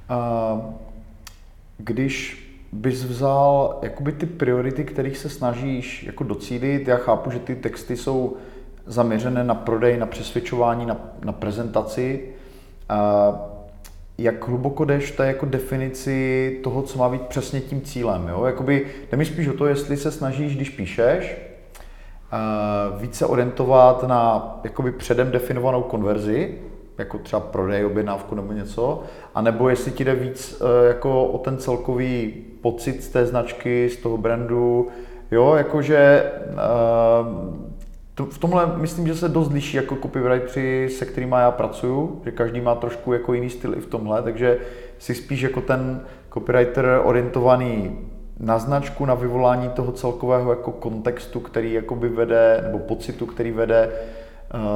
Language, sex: Czech, male